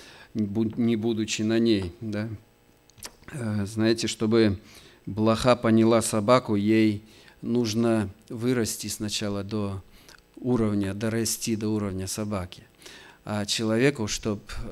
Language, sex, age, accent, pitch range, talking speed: Russian, male, 40-59, native, 95-115 Hz, 90 wpm